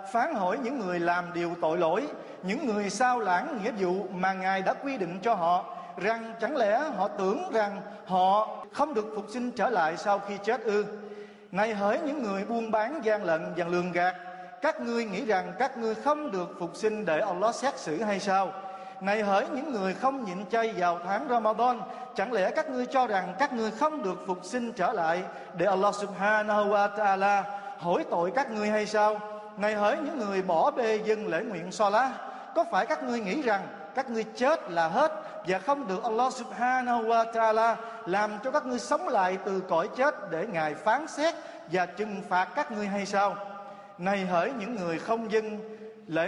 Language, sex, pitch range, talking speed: Vietnamese, male, 195-245 Hz, 200 wpm